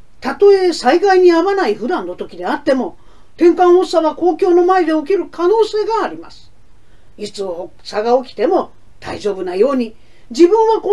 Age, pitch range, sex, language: 50-69, 235-365 Hz, female, Japanese